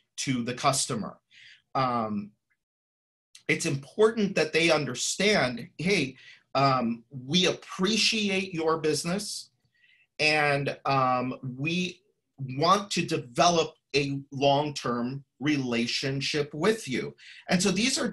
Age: 40-59